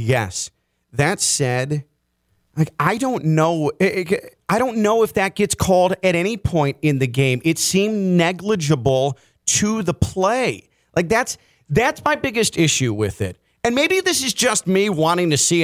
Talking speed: 165 wpm